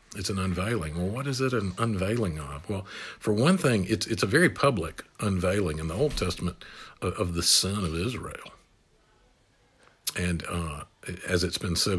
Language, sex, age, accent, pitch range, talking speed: English, male, 50-69, American, 90-115 Hz, 180 wpm